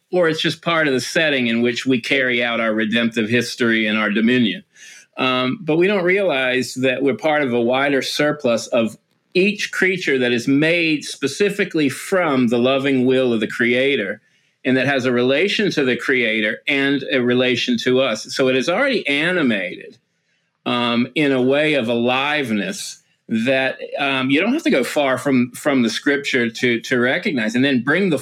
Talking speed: 185 wpm